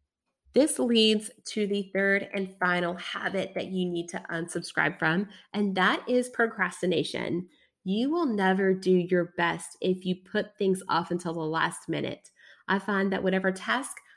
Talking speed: 160 wpm